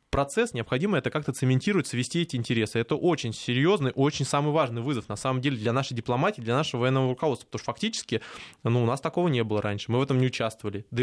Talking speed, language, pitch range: 225 wpm, Russian, 120-155 Hz